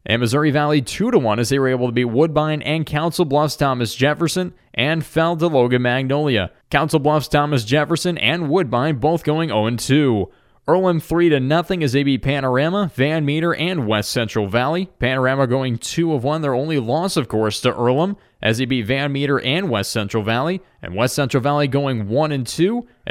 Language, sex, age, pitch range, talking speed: English, male, 20-39, 125-160 Hz, 175 wpm